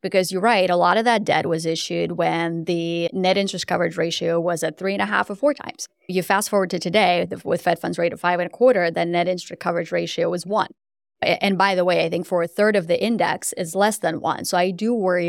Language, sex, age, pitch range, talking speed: English, female, 20-39, 175-200 Hz, 260 wpm